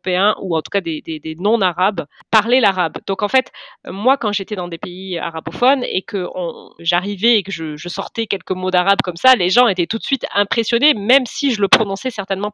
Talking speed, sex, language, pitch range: 225 wpm, female, French, 180-235 Hz